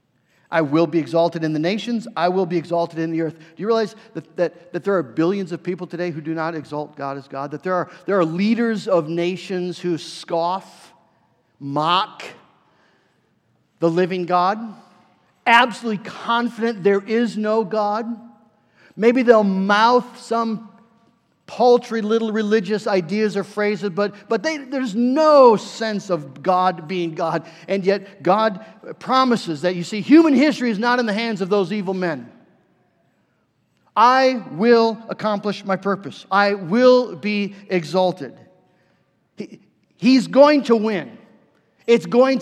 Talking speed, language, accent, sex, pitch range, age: 150 wpm, English, American, male, 165-225 Hz, 50-69